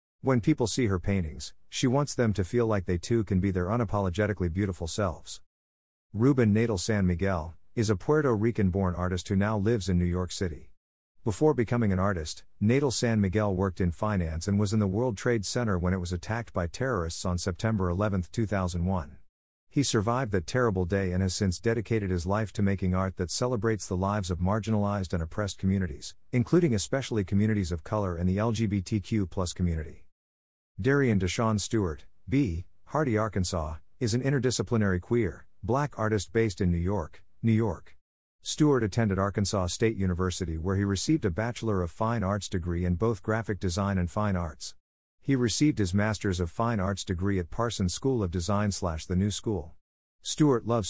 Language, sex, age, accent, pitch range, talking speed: English, male, 50-69, American, 90-115 Hz, 180 wpm